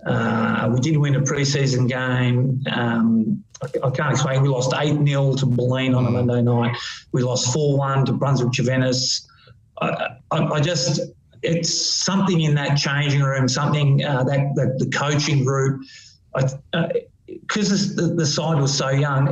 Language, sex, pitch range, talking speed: English, male, 130-155 Hz, 175 wpm